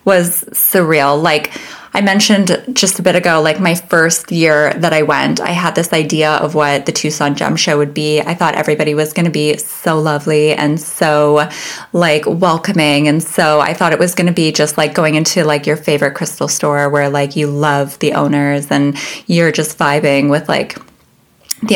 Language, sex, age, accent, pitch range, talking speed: English, female, 20-39, American, 155-195 Hz, 200 wpm